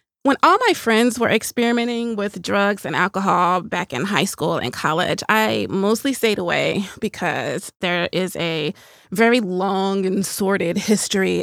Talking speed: 150 wpm